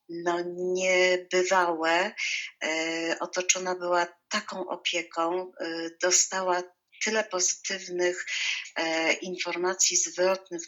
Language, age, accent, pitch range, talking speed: Polish, 50-69, native, 155-180 Hz, 75 wpm